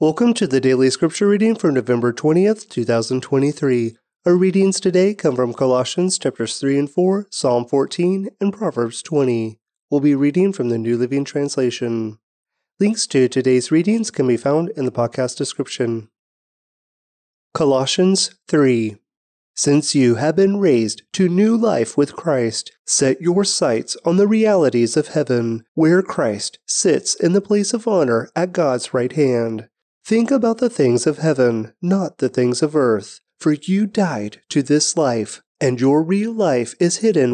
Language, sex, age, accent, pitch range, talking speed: English, male, 30-49, American, 125-190 Hz, 160 wpm